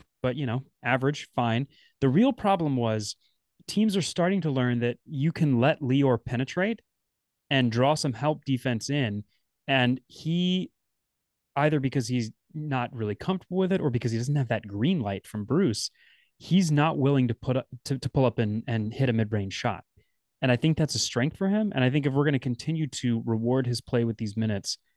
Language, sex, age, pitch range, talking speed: English, male, 30-49, 115-140 Hz, 205 wpm